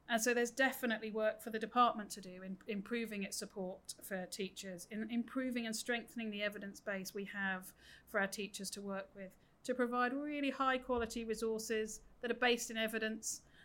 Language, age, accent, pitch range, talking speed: English, 40-59, British, 200-240 Hz, 185 wpm